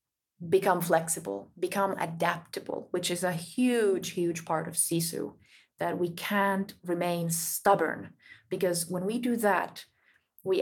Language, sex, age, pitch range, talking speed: English, female, 20-39, 165-190 Hz, 130 wpm